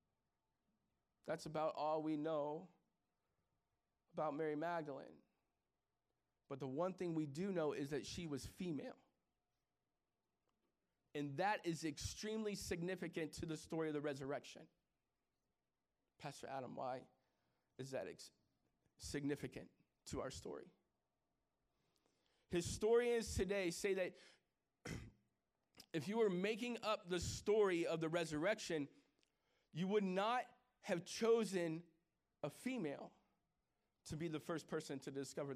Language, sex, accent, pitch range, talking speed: English, male, American, 160-225 Hz, 115 wpm